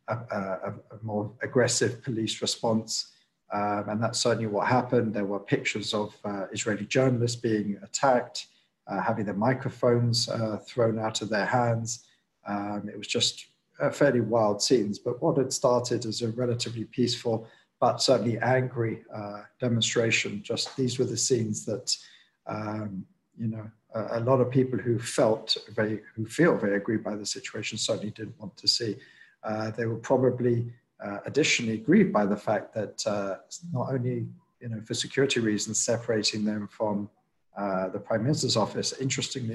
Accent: British